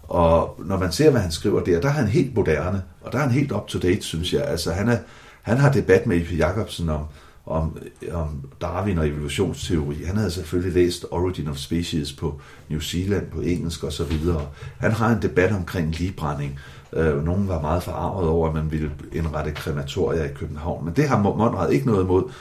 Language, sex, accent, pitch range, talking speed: English, male, Danish, 80-105 Hz, 200 wpm